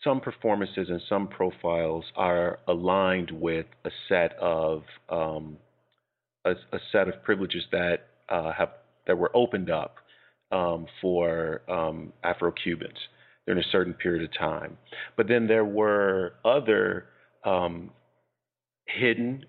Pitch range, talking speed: 85-105 Hz, 125 wpm